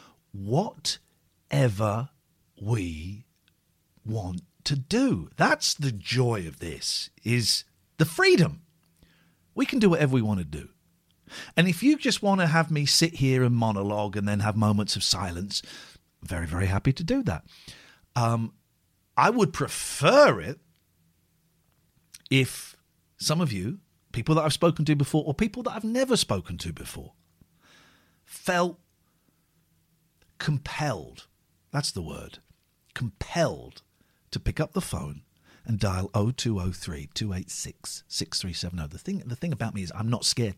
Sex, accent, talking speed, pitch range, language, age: male, British, 140 wpm, 95-160 Hz, English, 50-69